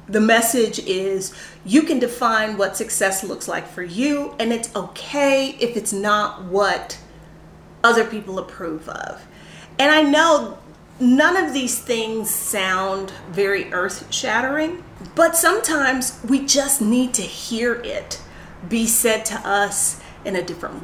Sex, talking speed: female, 140 wpm